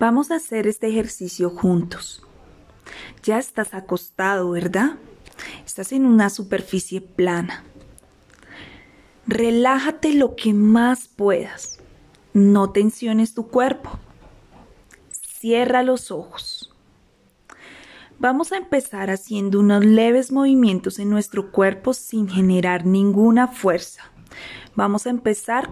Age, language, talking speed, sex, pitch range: 30-49, Spanish, 105 wpm, female, 190-235 Hz